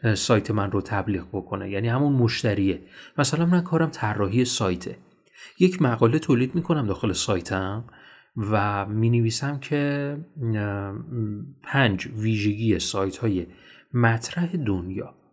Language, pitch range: Persian, 105-155 Hz